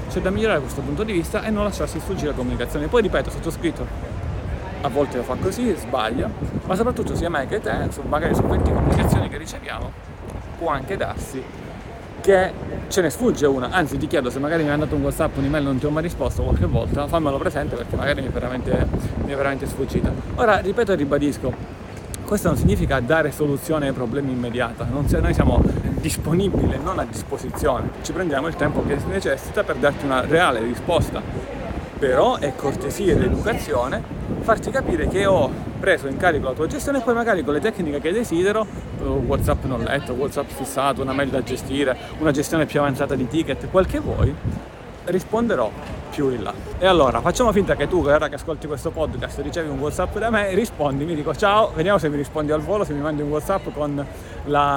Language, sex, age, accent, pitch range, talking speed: Italian, male, 40-59, native, 135-165 Hz, 200 wpm